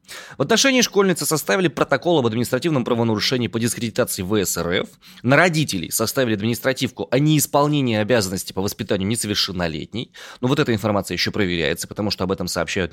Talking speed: 155 wpm